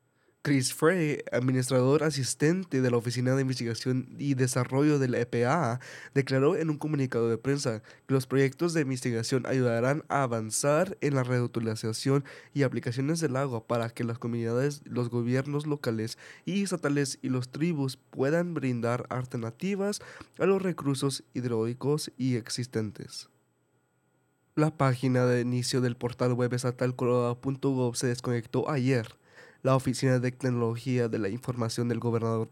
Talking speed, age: 140 wpm, 20-39